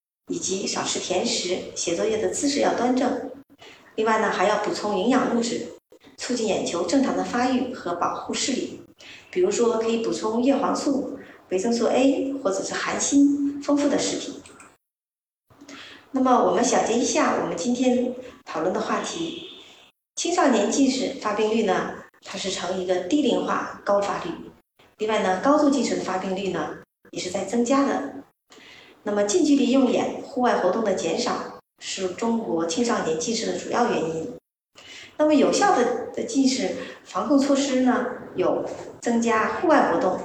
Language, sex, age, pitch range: Chinese, female, 30-49, 215-275 Hz